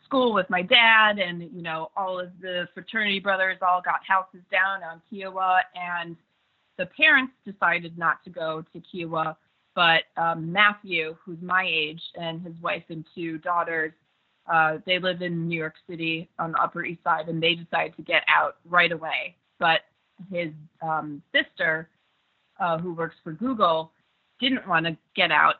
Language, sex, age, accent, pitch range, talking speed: English, female, 30-49, American, 170-205 Hz, 170 wpm